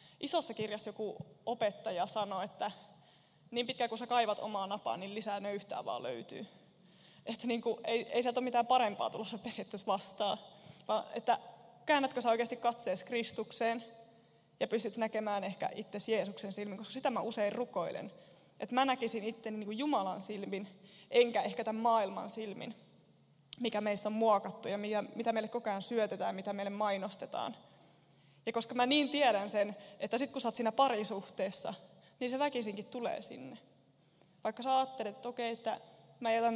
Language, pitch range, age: Finnish, 205-235 Hz, 20-39